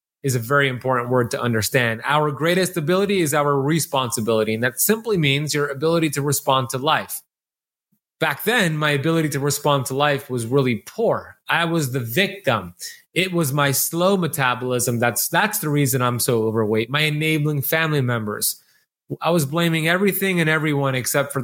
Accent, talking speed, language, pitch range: American, 175 wpm, English, 125-155 Hz